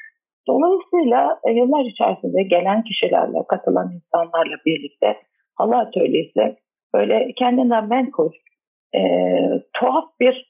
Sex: female